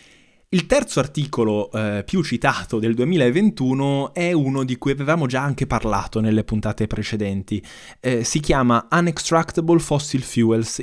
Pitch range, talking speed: 110-140 Hz, 140 wpm